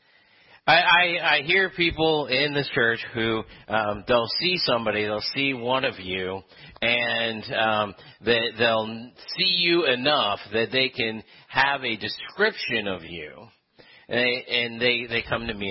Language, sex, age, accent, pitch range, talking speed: English, male, 40-59, American, 110-165 Hz, 145 wpm